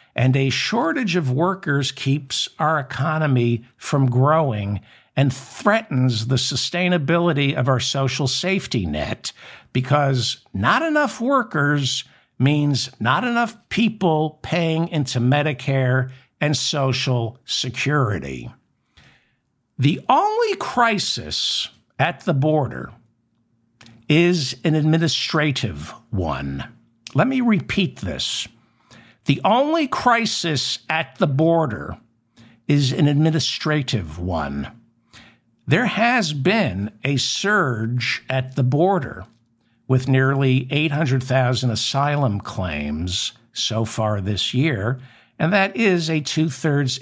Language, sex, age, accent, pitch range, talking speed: English, male, 60-79, American, 115-155 Hz, 100 wpm